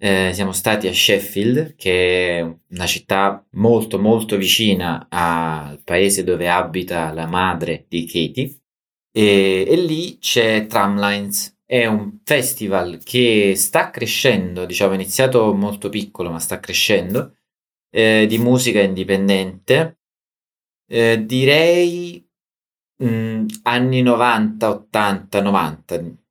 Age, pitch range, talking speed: 30-49, 95-115 Hz, 115 wpm